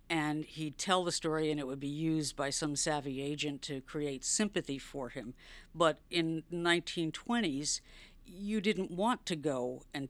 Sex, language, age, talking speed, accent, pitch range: female, English, 50-69, 165 wpm, American, 140-160 Hz